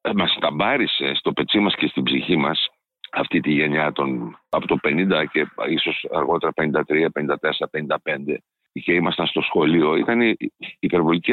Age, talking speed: 50-69, 155 wpm